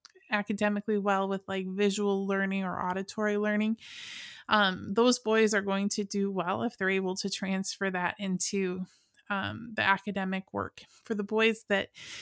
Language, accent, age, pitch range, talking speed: English, American, 20-39, 200-225 Hz, 155 wpm